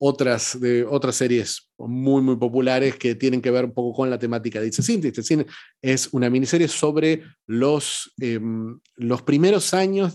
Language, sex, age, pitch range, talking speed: Spanish, male, 30-49, 120-150 Hz, 170 wpm